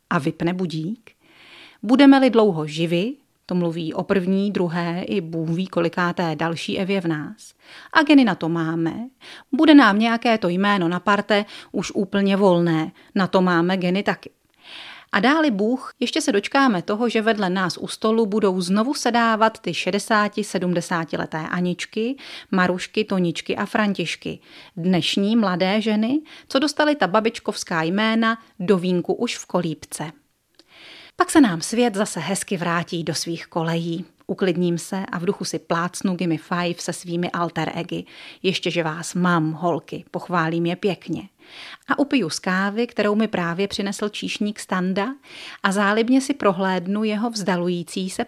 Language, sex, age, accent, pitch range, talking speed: Czech, female, 40-59, native, 175-225 Hz, 150 wpm